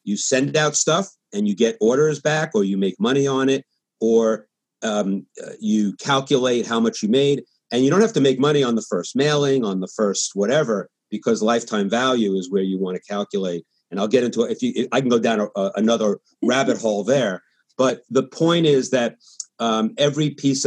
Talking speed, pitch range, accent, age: 215 wpm, 105-135 Hz, American, 50-69